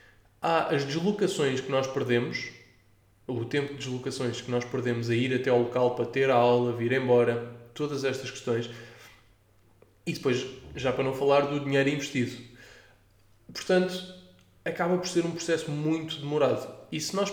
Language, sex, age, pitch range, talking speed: English, male, 20-39, 120-150 Hz, 165 wpm